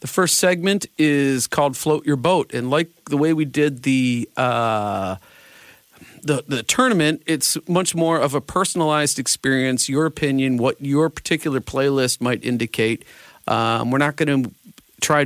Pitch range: 120-155 Hz